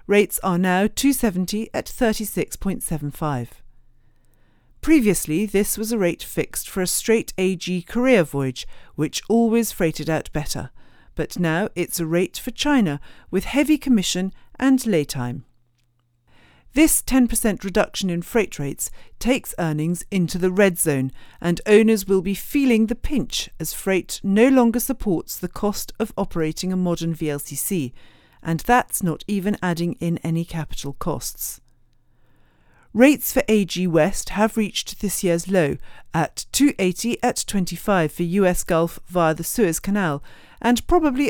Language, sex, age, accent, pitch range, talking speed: English, female, 50-69, British, 160-225 Hz, 140 wpm